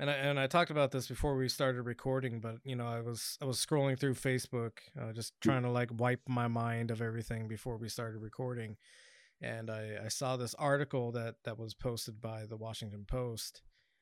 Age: 20-39